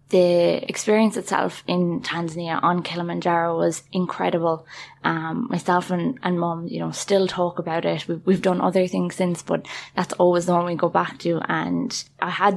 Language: English